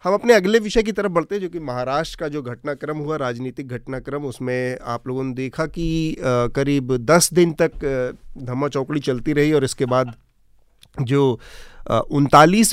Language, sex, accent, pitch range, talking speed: Hindi, male, native, 125-155 Hz, 170 wpm